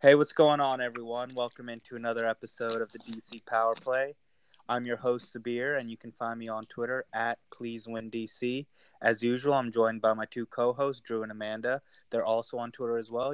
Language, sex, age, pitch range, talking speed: English, male, 20-39, 110-120 Hz, 200 wpm